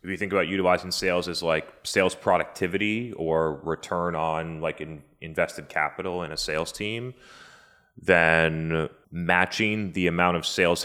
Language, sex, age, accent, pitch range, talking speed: English, male, 30-49, American, 85-100 Hz, 145 wpm